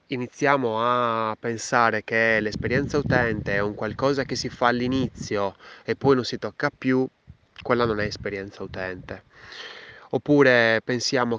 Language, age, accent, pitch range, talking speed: Italian, 20-39, native, 105-125 Hz, 135 wpm